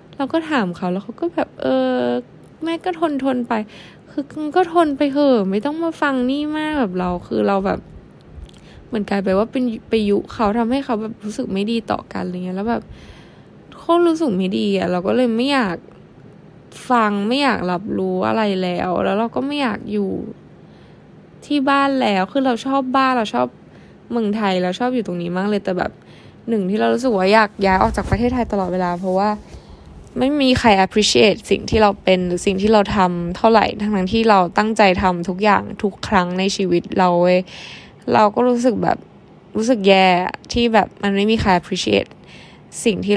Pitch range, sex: 185-245 Hz, female